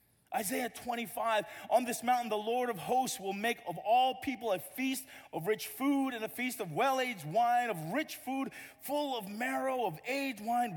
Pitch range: 185-265 Hz